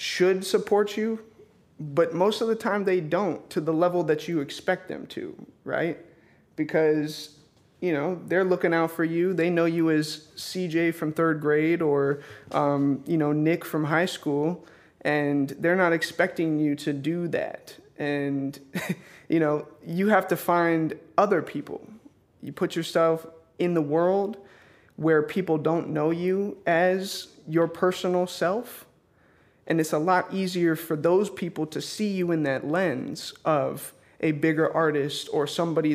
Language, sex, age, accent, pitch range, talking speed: English, male, 20-39, American, 150-185 Hz, 160 wpm